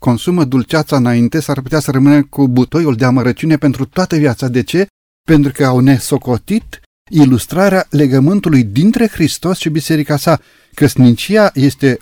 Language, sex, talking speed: Romanian, male, 145 wpm